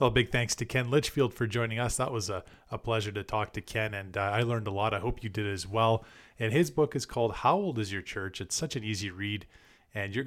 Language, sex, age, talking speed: English, male, 30-49, 275 wpm